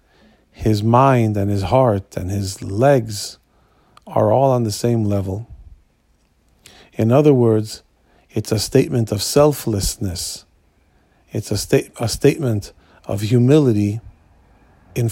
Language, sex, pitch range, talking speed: English, male, 95-125 Hz, 115 wpm